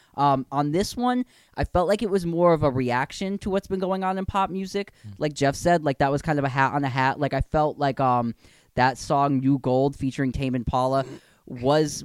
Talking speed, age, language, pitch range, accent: 240 wpm, 10-29, English, 130-160 Hz, American